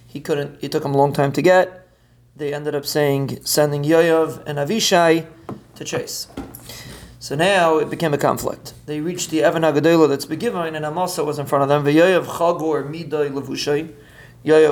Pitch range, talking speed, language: 140-160 Hz, 175 wpm, English